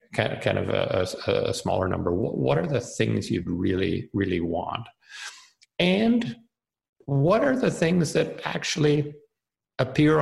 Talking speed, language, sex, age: 155 wpm, English, male, 50-69